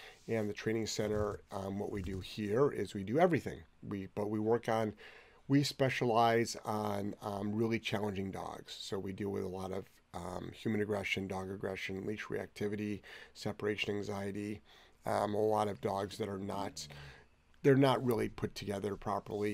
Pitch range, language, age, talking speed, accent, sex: 100-115 Hz, English, 30-49, 170 wpm, American, male